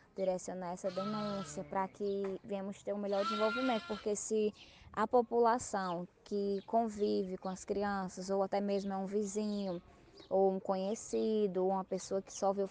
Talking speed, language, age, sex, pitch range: 165 wpm, Portuguese, 20-39, female, 190-215 Hz